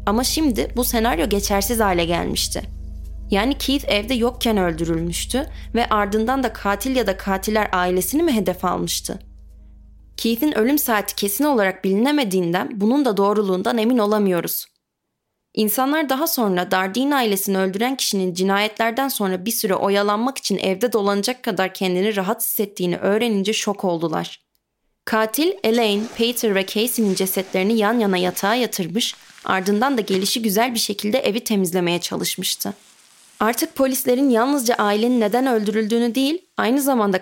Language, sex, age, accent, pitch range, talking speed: Turkish, female, 30-49, native, 190-245 Hz, 135 wpm